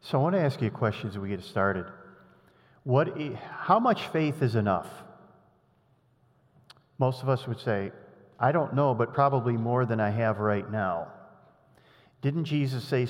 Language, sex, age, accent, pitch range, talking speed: English, male, 50-69, American, 120-155 Hz, 170 wpm